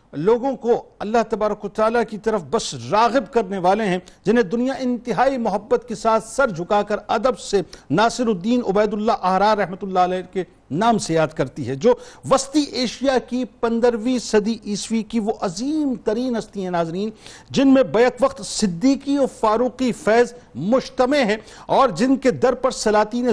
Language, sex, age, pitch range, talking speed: Urdu, male, 50-69, 210-250 Hz, 170 wpm